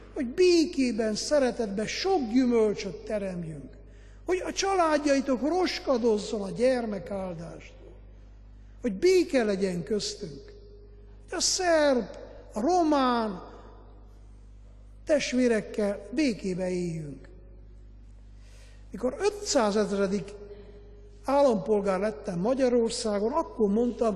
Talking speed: 75 wpm